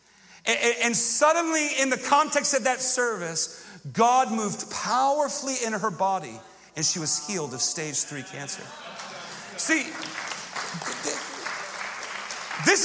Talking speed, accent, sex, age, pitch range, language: 110 wpm, American, male, 40-59, 205-300 Hz, English